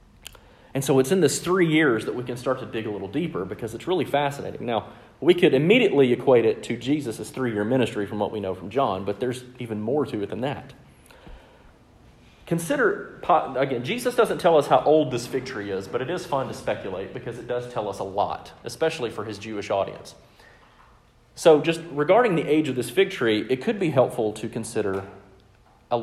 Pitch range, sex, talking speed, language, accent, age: 110-155 Hz, male, 205 wpm, English, American, 40-59